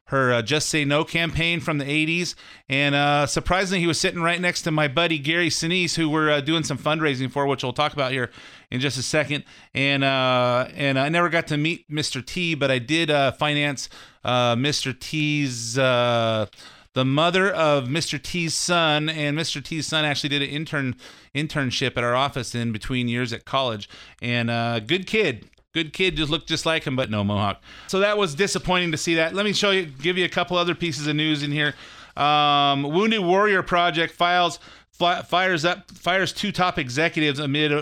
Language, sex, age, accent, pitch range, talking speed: English, male, 30-49, American, 135-165 Hz, 205 wpm